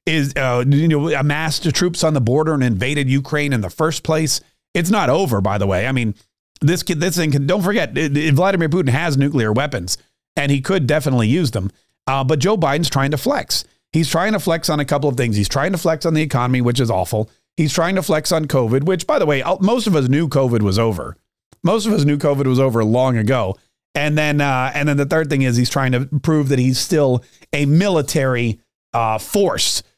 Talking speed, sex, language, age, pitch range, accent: 220 wpm, male, English, 40-59, 125-160 Hz, American